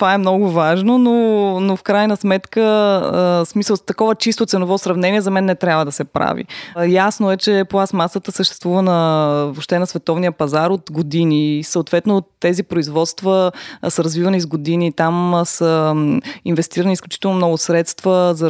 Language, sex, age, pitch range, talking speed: Bulgarian, female, 20-39, 160-190 Hz, 150 wpm